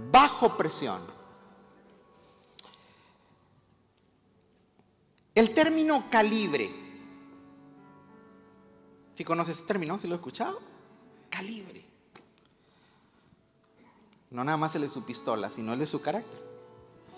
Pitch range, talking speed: 150-215 Hz, 100 wpm